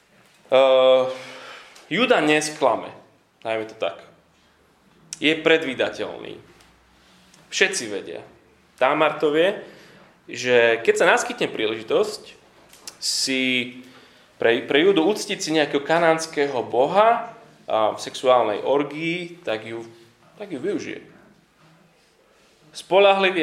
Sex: male